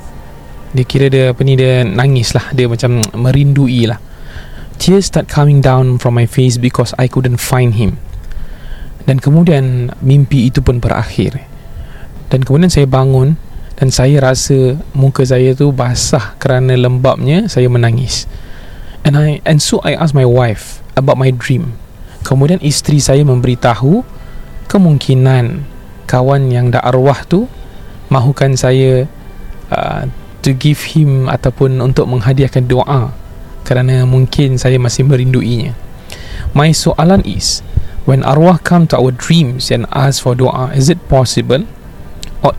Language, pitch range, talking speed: Malay, 120-140 Hz, 140 wpm